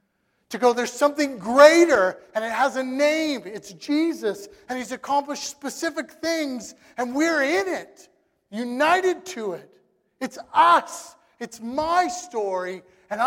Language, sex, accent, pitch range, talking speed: English, male, American, 185-265 Hz, 135 wpm